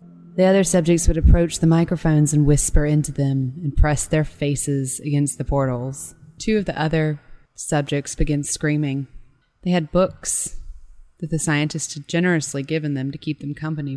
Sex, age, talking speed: female, 20-39, 170 wpm